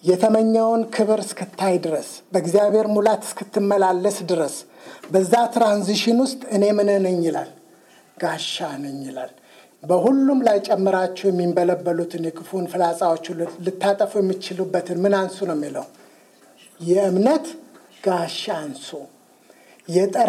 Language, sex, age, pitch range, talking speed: English, male, 60-79, 180-215 Hz, 95 wpm